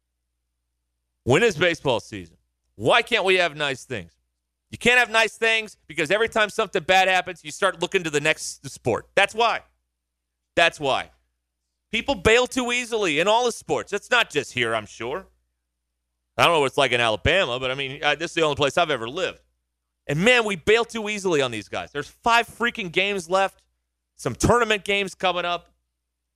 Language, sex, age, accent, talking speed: English, male, 40-59, American, 190 wpm